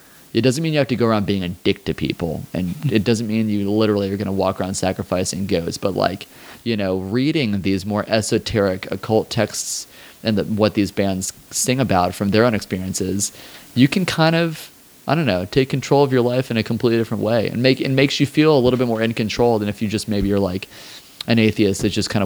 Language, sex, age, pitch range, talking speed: English, male, 30-49, 100-125 Hz, 235 wpm